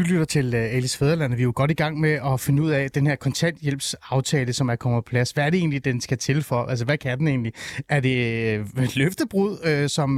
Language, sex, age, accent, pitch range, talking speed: Danish, male, 30-49, native, 135-175 Hz, 265 wpm